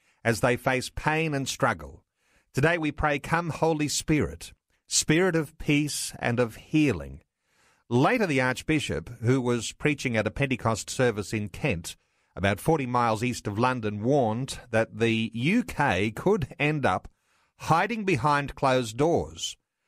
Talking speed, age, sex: 140 wpm, 50-69, male